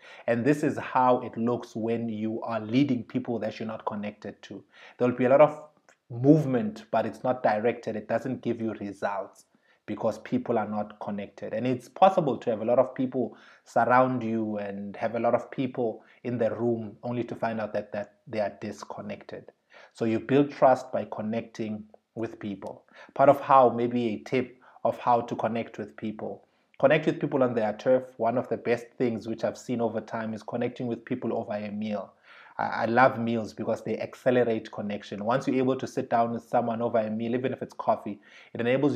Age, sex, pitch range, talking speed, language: 30-49, male, 110-130 Hz, 205 wpm, English